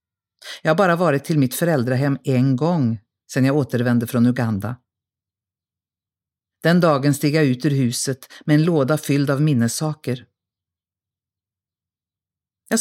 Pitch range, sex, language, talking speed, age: 100-160 Hz, female, Swedish, 130 wpm, 50-69